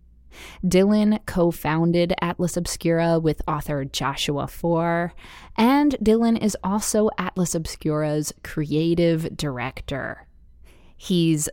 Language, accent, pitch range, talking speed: English, American, 155-200 Hz, 90 wpm